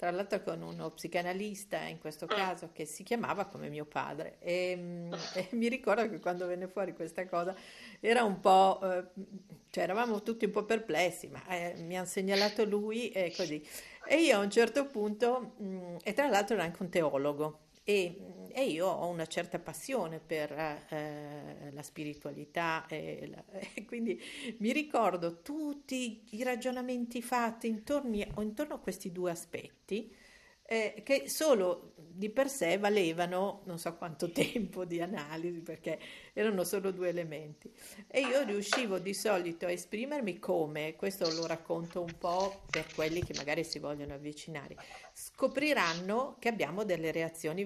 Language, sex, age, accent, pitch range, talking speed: Italian, female, 50-69, native, 165-210 Hz, 150 wpm